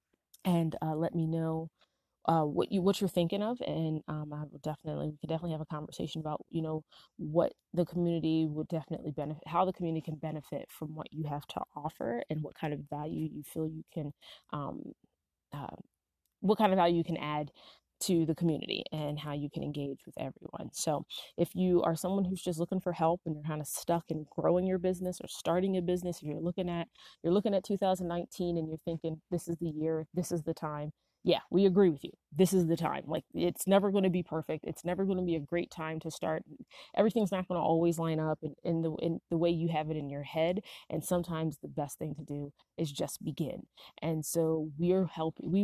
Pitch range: 155-175 Hz